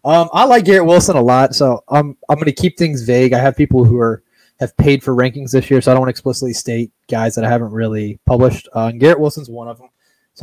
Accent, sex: American, male